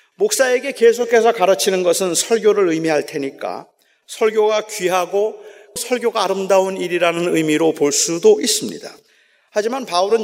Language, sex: Korean, male